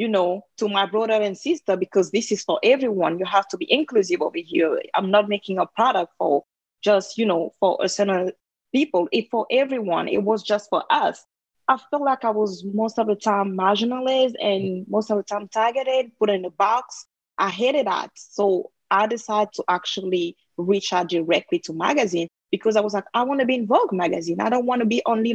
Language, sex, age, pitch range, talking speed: English, female, 20-39, 190-230 Hz, 215 wpm